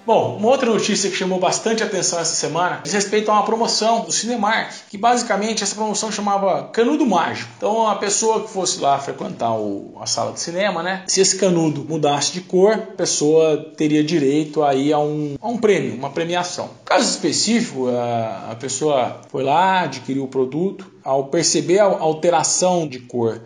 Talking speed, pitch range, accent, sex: 180 wpm, 150-210 Hz, Brazilian, male